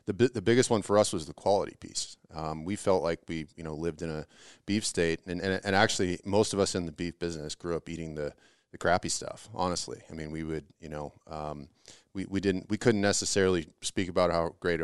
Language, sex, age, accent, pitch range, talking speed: English, male, 30-49, American, 75-95 Hz, 240 wpm